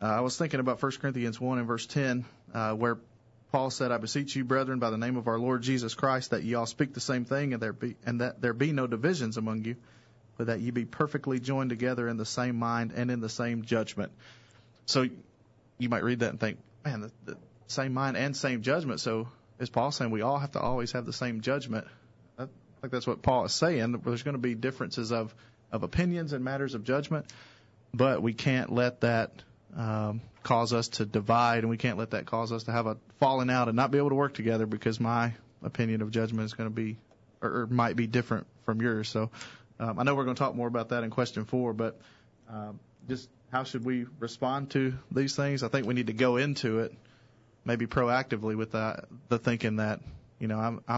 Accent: American